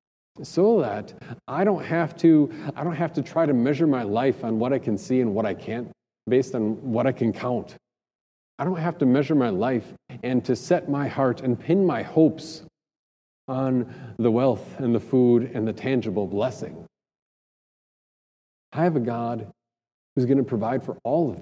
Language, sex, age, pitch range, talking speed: English, male, 40-59, 115-145 Hz, 190 wpm